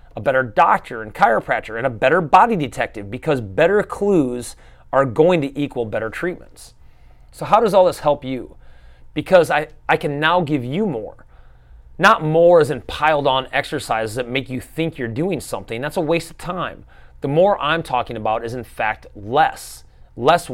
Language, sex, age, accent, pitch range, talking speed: English, male, 30-49, American, 115-170 Hz, 185 wpm